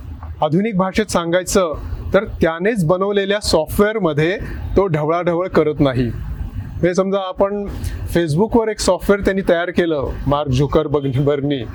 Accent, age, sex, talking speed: native, 30-49, male, 50 wpm